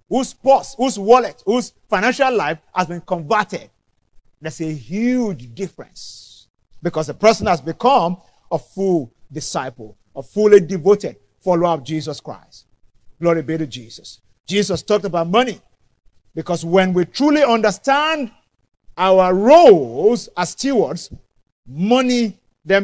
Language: English